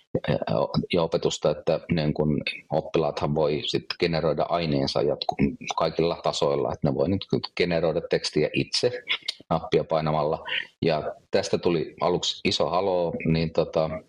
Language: Finnish